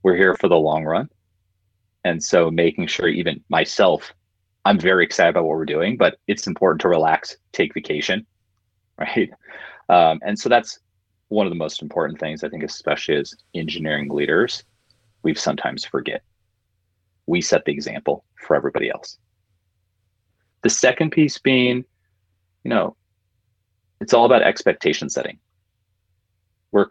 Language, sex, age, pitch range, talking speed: English, male, 30-49, 90-100 Hz, 145 wpm